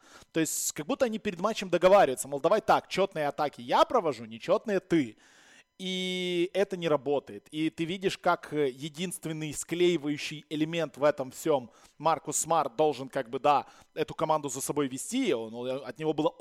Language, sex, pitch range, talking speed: Russian, male, 150-180 Hz, 170 wpm